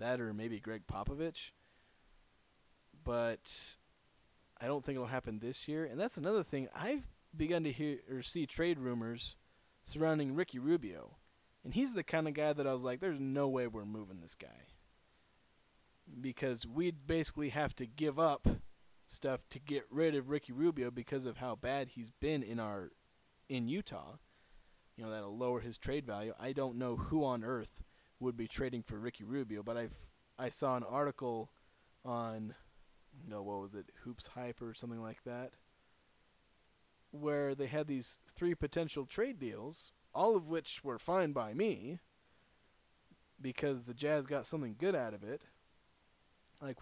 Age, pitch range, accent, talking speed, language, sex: 30-49, 120-150 Hz, American, 165 wpm, English, male